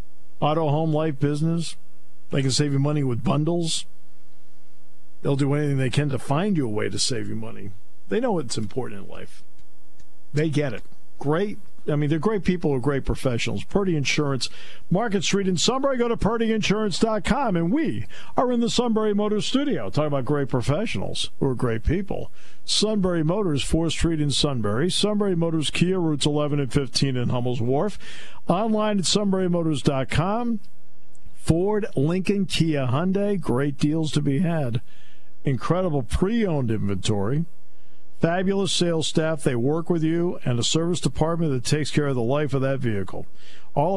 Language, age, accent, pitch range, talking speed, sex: English, 50-69, American, 125-175 Hz, 165 wpm, male